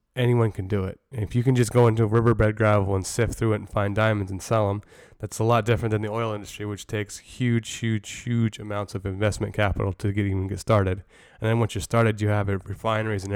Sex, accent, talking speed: male, American, 245 wpm